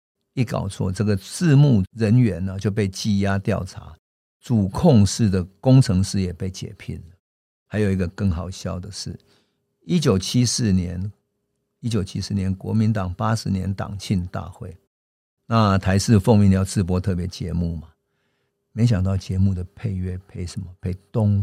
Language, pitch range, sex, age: Chinese, 95-120 Hz, male, 50-69